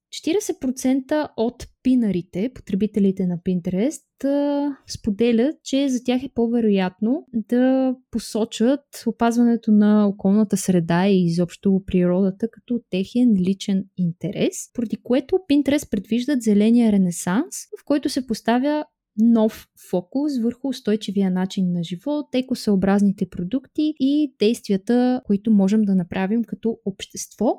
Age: 20-39